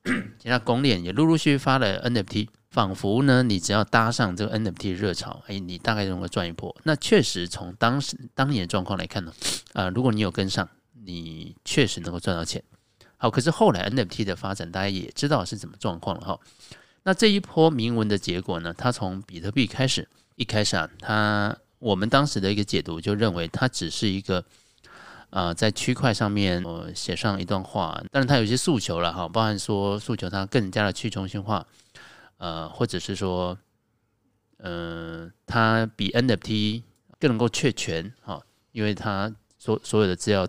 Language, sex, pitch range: Chinese, male, 95-120 Hz